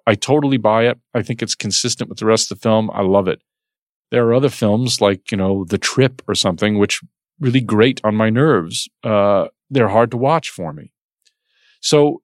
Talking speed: 205 wpm